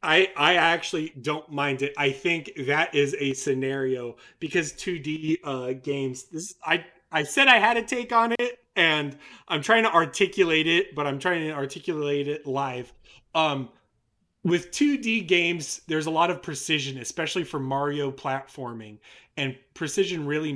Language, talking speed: English, 160 wpm